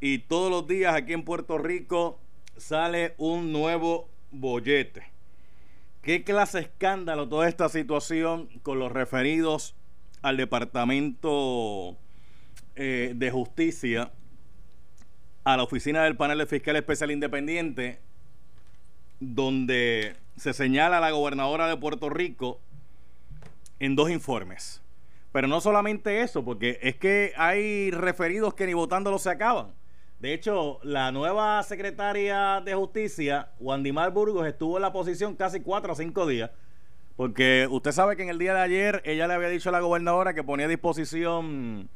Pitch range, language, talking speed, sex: 130-175 Hz, Spanish, 145 wpm, male